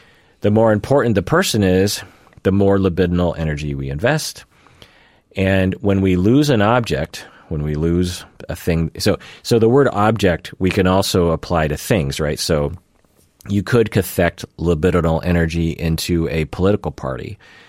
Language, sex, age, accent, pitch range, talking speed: English, male, 40-59, American, 75-95 Hz, 155 wpm